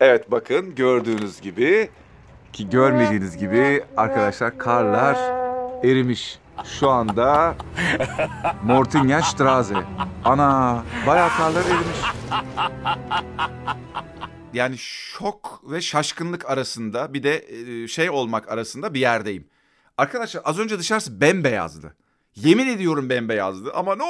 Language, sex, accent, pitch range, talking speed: Turkish, male, native, 120-180 Hz, 100 wpm